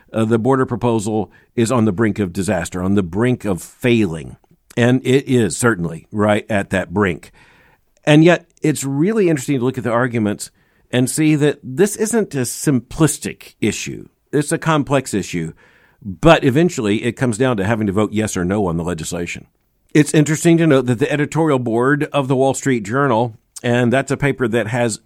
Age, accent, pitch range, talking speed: 50-69, American, 110-145 Hz, 190 wpm